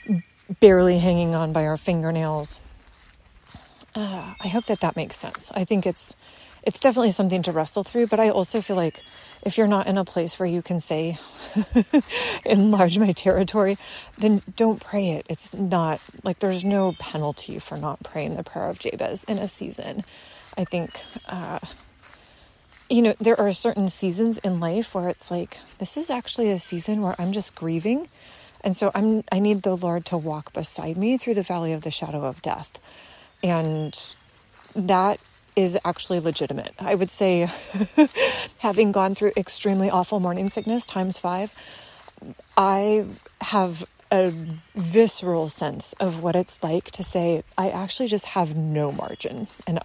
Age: 30-49